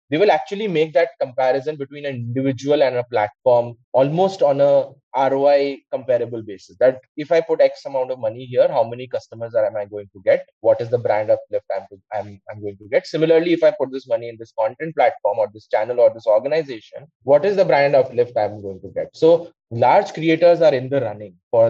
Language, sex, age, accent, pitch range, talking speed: English, male, 20-39, Indian, 120-170 Hz, 225 wpm